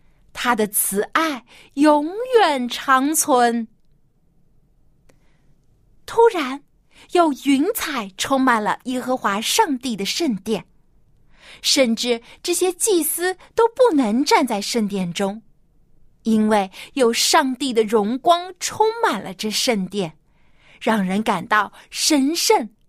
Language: Chinese